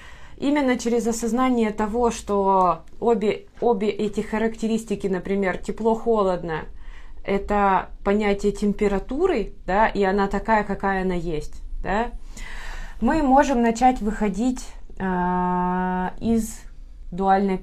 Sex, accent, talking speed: female, native, 100 wpm